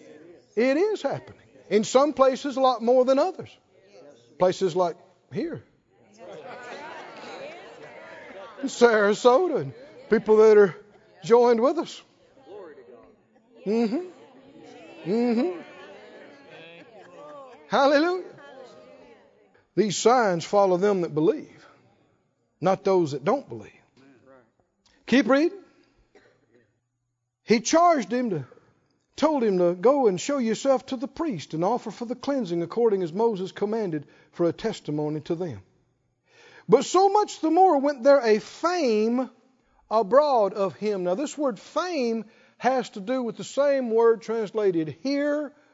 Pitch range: 180-275 Hz